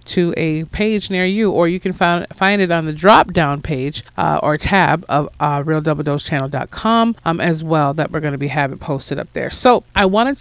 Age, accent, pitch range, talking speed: 40-59, American, 150-195 Hz, 215 wpm